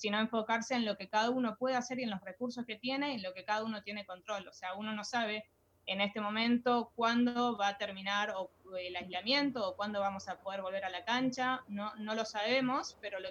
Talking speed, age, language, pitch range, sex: 240 wpm, 20-39, Spanish, 190-235 Hz, female